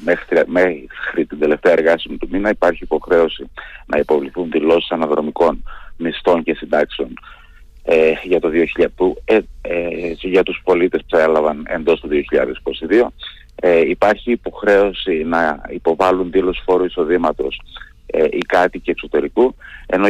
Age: 30-49